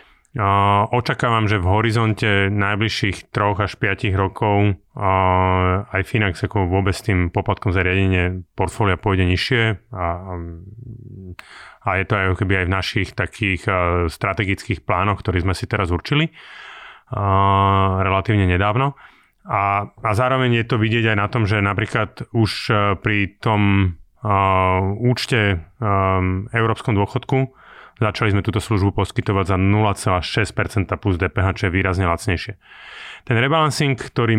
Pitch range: 95-110 Hz